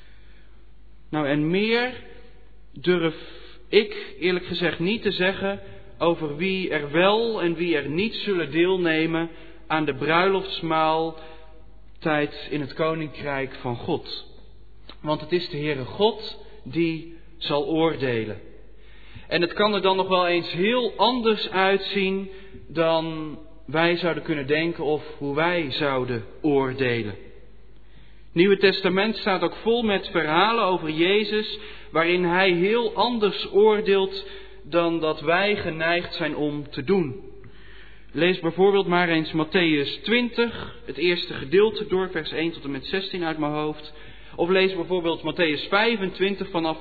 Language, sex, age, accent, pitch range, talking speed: Dutch, male, 40-59, Dutch, 150-190 Hz, 135 wpm